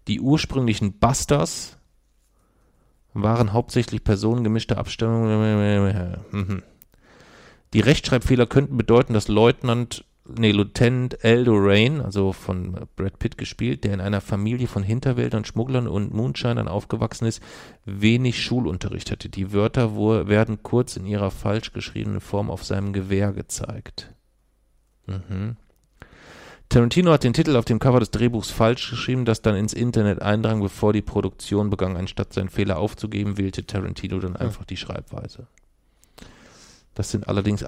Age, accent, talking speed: 40-59, German, 135 wpm